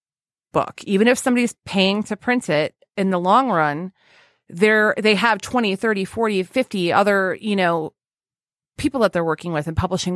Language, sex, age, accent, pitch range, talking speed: English, female, 30-49, American, 175-220 Hz, 170 wpm